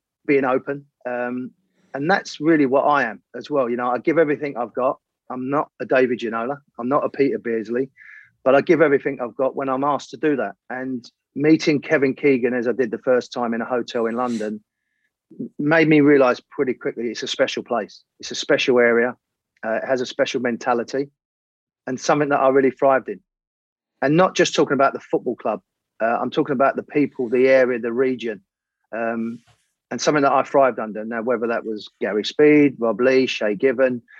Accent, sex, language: British, male, English